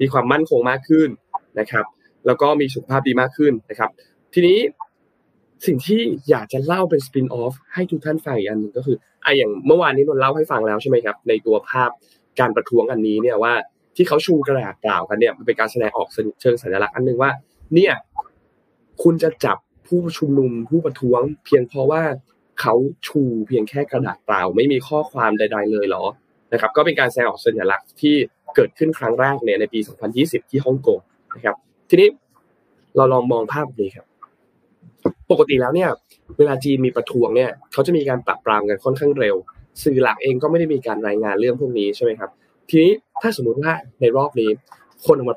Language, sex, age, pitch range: Thai, male, 20-39, 130-180 Hz